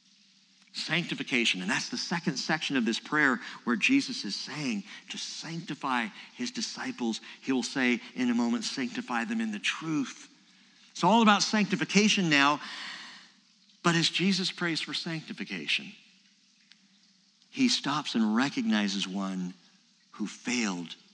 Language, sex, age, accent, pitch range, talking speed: English, male, 50-69, American, 165-230 Hz, 130 wpm